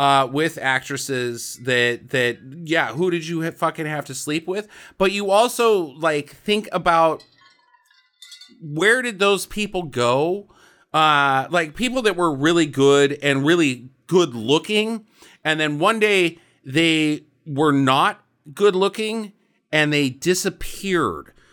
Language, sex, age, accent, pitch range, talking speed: English, male, 40-59, American, 140-190 Hz, 130 wpm